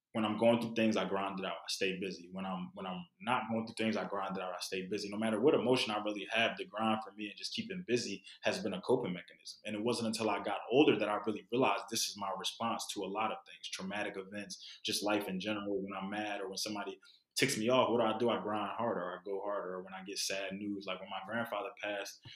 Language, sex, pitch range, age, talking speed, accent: English, male, 100-115 Hz, 20-39, 280 wpm, American